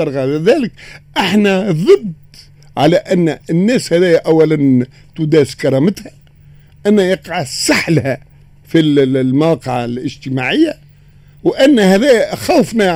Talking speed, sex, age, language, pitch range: 95 wpm, male, 50-69, Arabic, 140-215 Hz